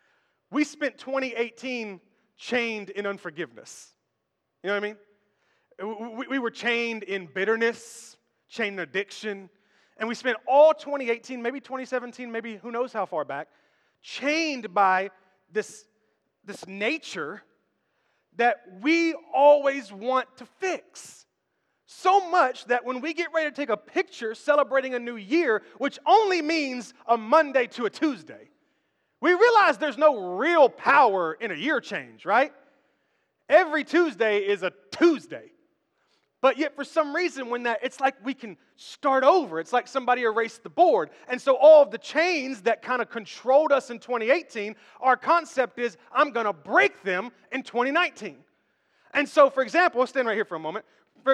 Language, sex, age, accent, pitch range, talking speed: English, male, 30-49, American, 225-300 Hz, 160 wpm